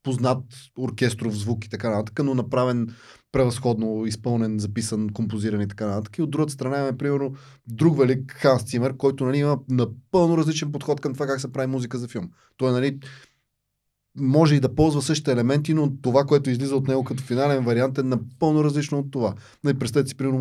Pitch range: 115-145 Hz